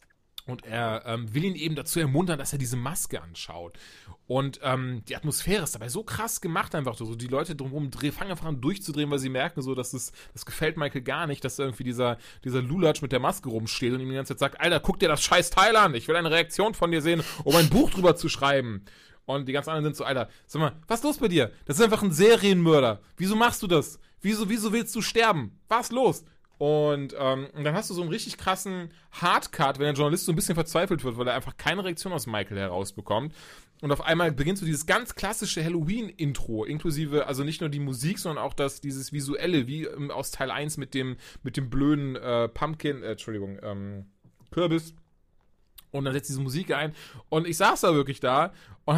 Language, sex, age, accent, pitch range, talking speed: German, male, 30-49, German, 130-170 Hz, 225 wpm